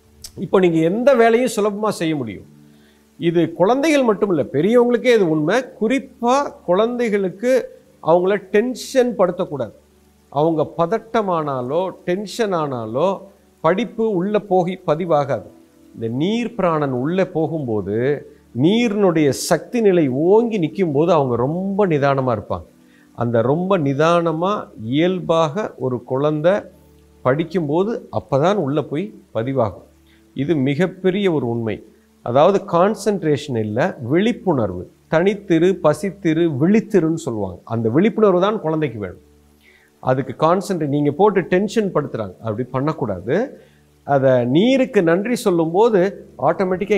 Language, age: Tamil, 50-69